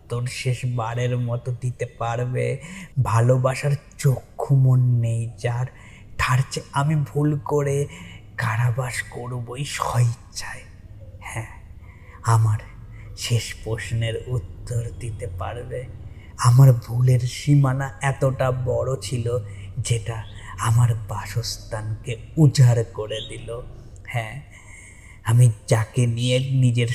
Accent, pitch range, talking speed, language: native, 105-125 Hz, 65 wpm, Bengali